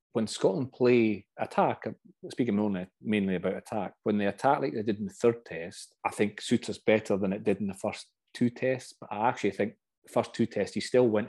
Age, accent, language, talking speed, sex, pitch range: 30-49, British, English, 230 wpm, male, 105-120 Hz